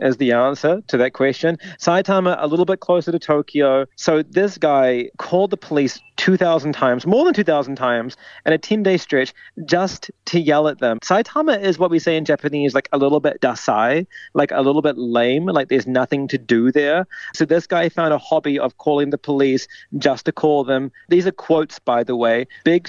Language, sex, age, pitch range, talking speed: English, male, 30-49, 140-175 Hz, 205 wpm